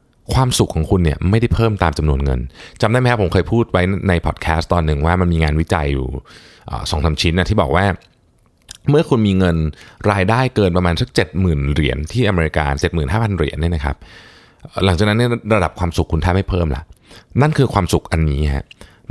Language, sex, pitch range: Thai, male, 80-105 Hz